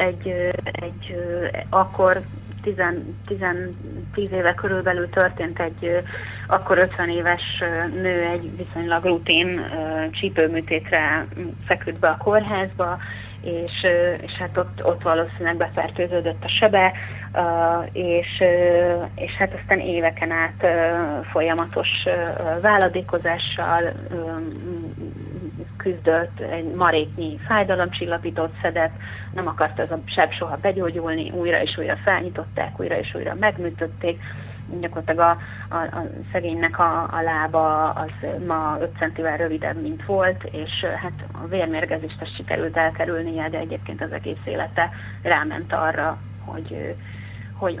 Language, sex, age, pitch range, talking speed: Hungarian, female, 30-49, 105-170 Hz, 110 wpm